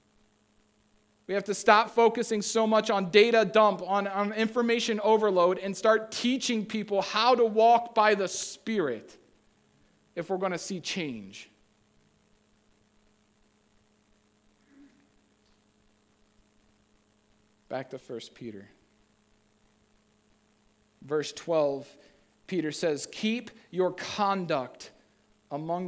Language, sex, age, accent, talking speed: English, male, 40-59, American, 95 wpm